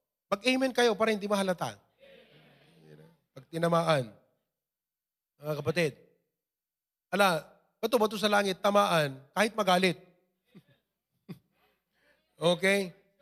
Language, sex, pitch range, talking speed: English, male, 160-225 Hz, 75 wpm